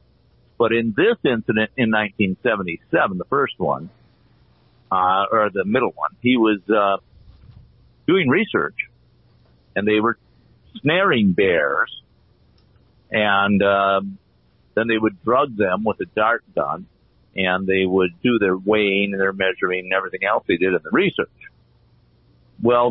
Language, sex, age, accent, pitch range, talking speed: English, male, 50-69, American, 95-130 Hz, 140 wpm